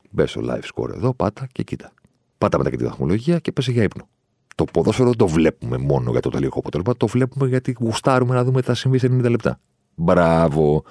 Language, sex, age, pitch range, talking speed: Greek, male, 40-59, 65-105 Hz, 210 wpm